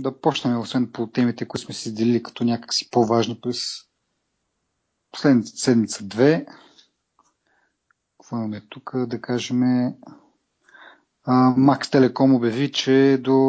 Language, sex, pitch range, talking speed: Bulgarian, male, 120-140 Hz, 110 wpm